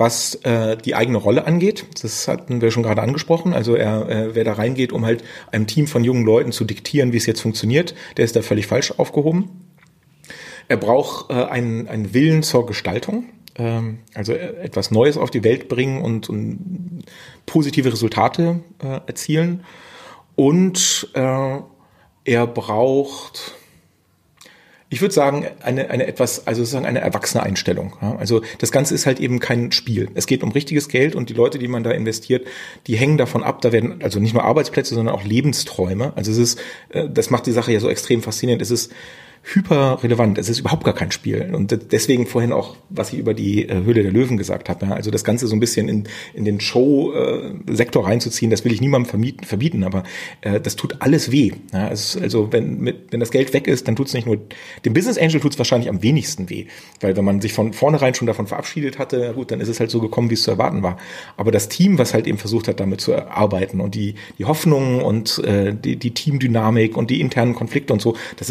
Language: German